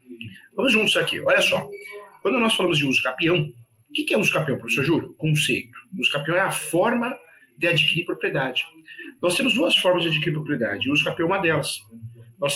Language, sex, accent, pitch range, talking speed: Portuguese, male, Brazilian, 135-180 Hz, 200 wpm